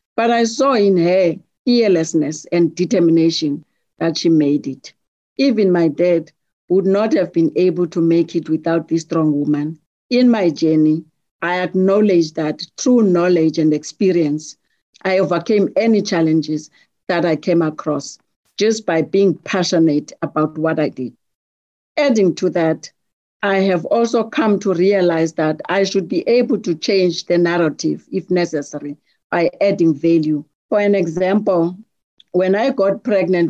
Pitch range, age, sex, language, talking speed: 160-190 Hz, 60-79, female, English, 150 wpm